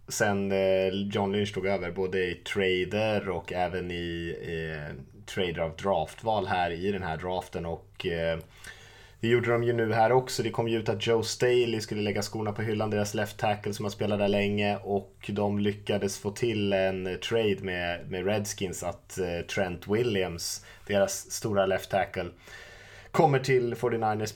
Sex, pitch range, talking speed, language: male, 90-105 Hz, 170 wpm, Swedish